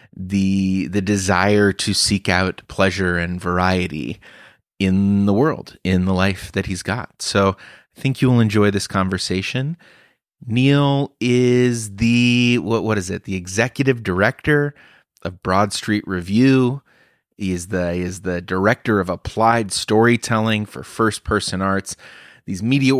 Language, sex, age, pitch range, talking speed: English, male, 30-49, 95-145 Hz, 145 wpm